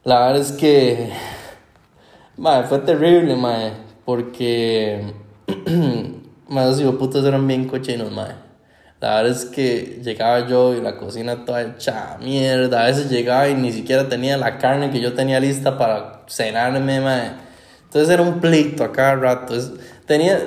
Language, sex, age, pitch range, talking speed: Spanish, male, 10-29, 115-145 Hz, 155 wpm